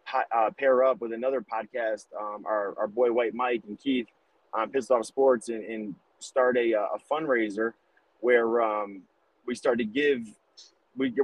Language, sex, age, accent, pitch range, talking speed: English, male, 30-49, American, 115-150 Hz, 170 wpm